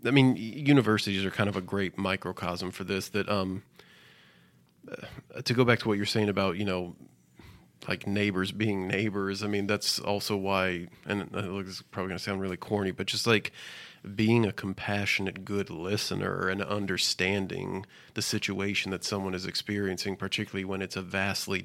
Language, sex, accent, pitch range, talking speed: English, male, American, 95-105 Hz, 170 wpm